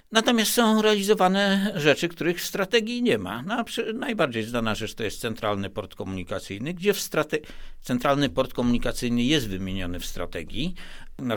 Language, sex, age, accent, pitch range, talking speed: Polish, male, 60-79, native, 110-180 Hz, 160 wpm